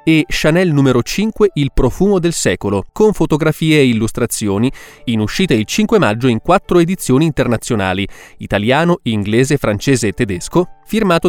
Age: 20-39